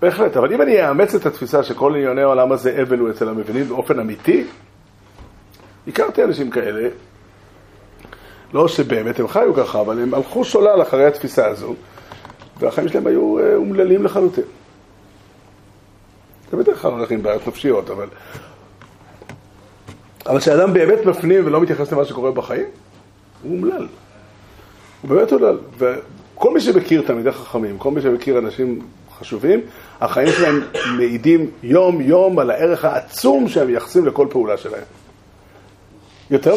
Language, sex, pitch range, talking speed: Hebrew, male, 120-195 Hz, 135 wpm